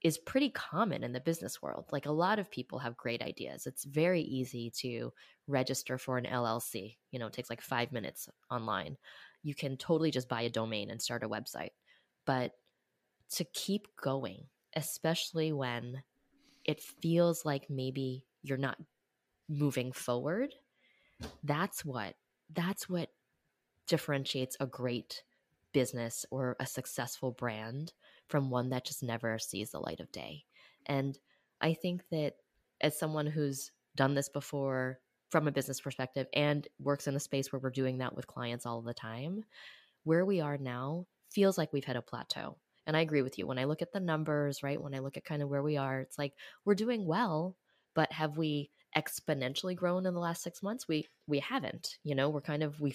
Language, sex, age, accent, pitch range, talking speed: English, female, 10-29, American, 130-160 Hz, 180 wpm